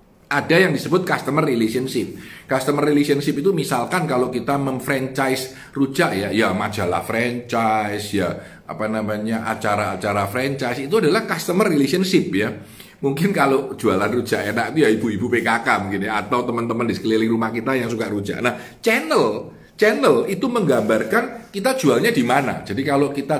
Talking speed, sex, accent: 150 wpm, male, native